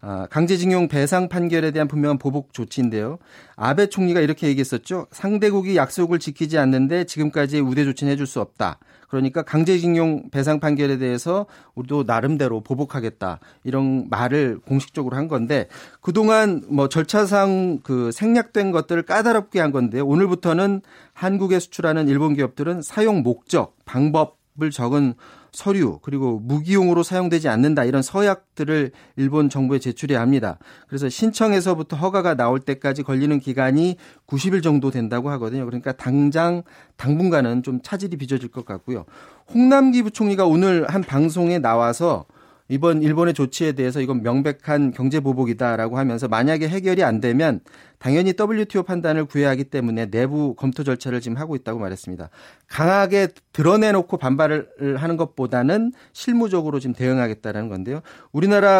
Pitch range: 130-175 Hz